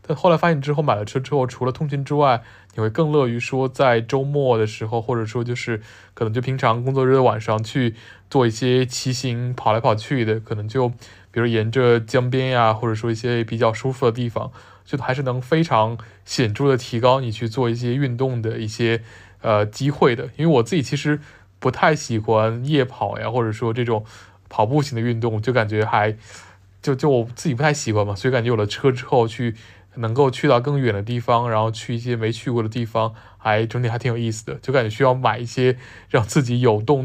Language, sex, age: Chinese, male, 20-39